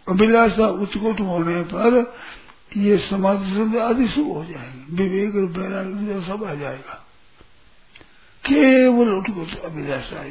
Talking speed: 100 wpm